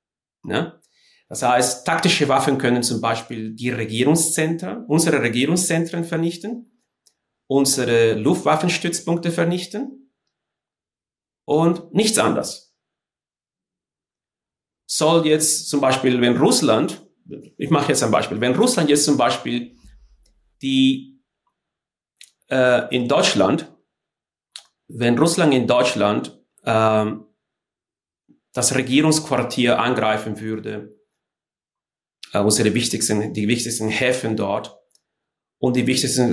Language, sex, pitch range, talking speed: German, male, 120-155 Hz, 95 wpm